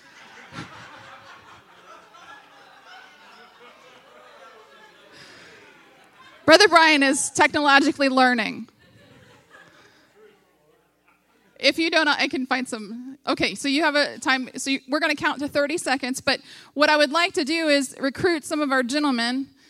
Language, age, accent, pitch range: English, 20-39, American, 275-360 Hz